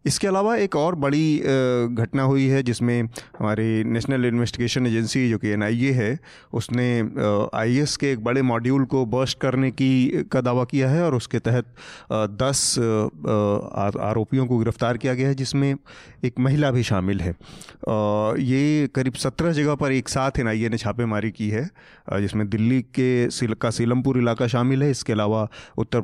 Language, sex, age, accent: Hindi, male, 30-49, native